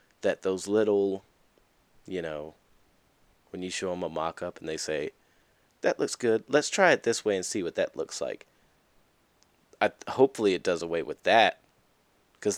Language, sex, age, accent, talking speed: English, male, 20-39, American, 170 wpm